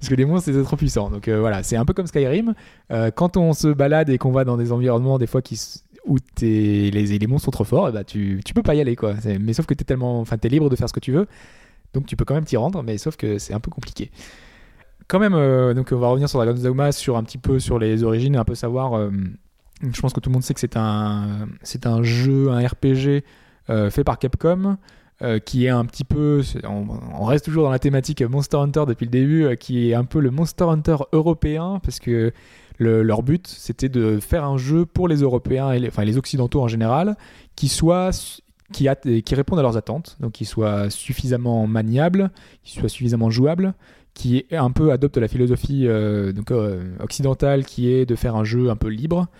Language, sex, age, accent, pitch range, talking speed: French, male, 20-39, French, 115-145 Hz, 240 wpm